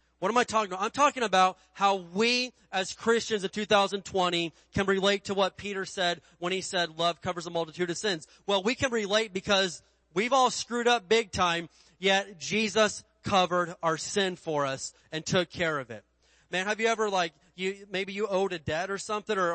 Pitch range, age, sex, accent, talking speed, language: 170-215 Hz, 30-49, male, American, 205 wpm, English